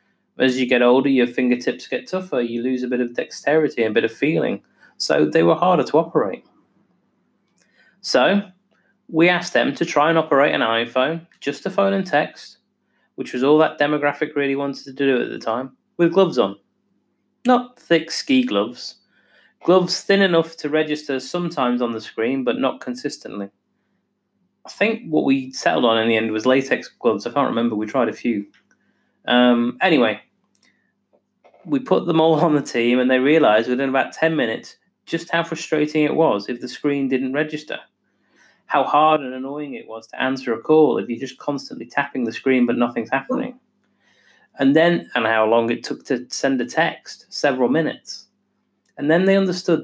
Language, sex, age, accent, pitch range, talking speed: English, male, 30-49, British, 125-170 Hz, 185 wpm